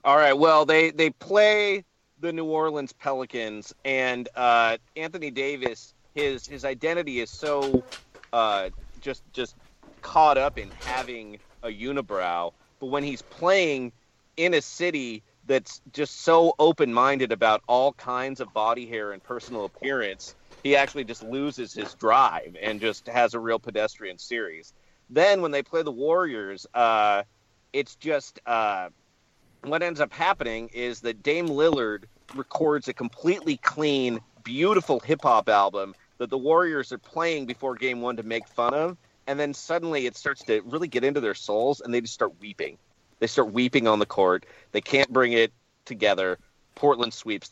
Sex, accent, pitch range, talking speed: male, American, 115-145 Hz, 160 wpm